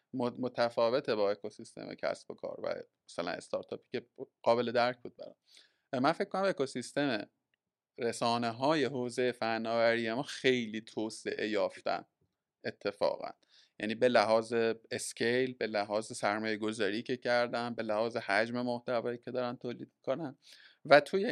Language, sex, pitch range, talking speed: Persian, male, 115-140 Hz, 130 wpm